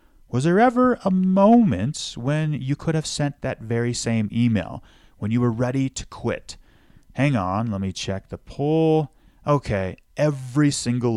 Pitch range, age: 105-140 Hz, 30-49